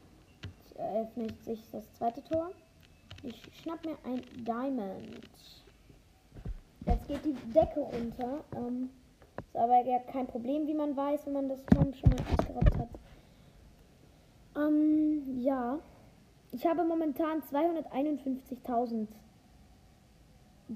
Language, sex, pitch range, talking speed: German, female, 235-305 Hz, 105 wpm